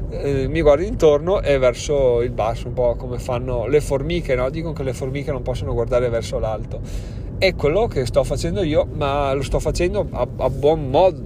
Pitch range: 115-145 Hz